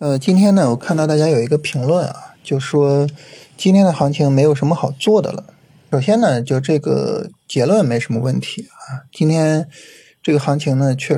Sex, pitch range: male, 135-165 Hz